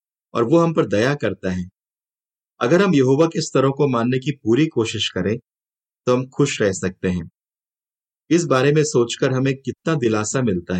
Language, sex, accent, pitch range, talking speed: Hindi, male, native, 110-150 Hz, 185 wpm